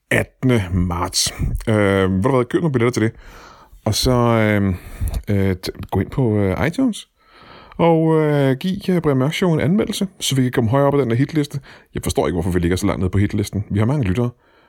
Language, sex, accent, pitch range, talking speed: Danish, male, native, 90-125 Hz, 215 wpm